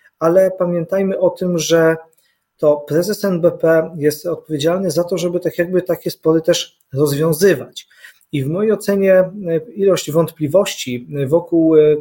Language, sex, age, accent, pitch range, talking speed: Polish, male, 40-59, native, 155-195 Hz, 120 wpm